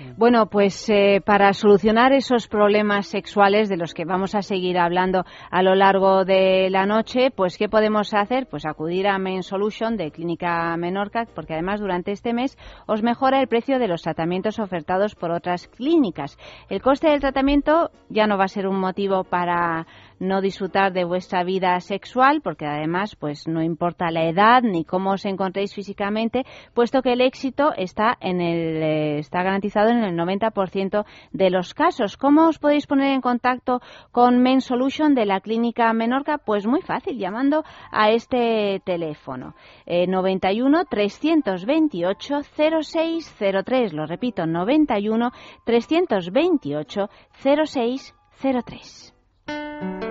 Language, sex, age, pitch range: Spanish, female, 30-49, 185-250 Hz